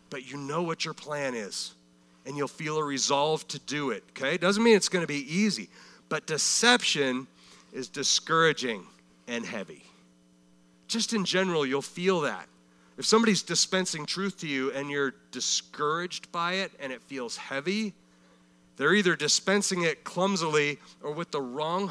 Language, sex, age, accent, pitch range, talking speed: English, male, 40-59, American, 120-190 Hz, 160 wpm